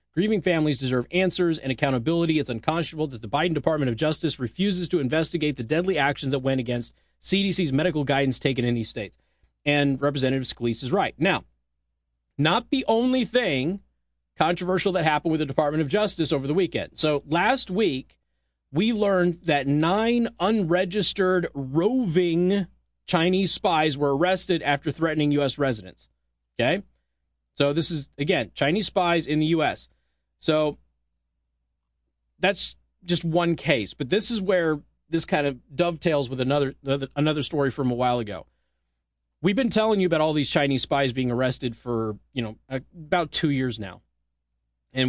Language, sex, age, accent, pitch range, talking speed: English, male, 30-49, American, 120-170 Hz, 155 wpm